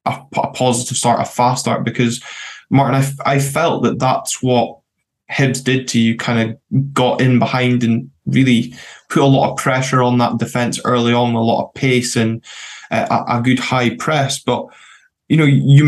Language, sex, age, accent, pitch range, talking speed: English, male, 10-29, British, 120-140 Hz, 190 wpm